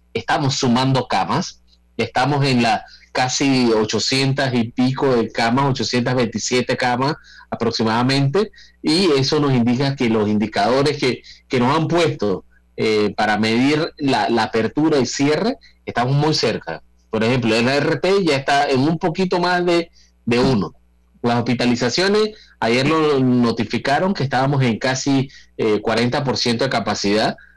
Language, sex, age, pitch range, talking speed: Spanish, male, 30-49, 110-140 Hz, 140 wpm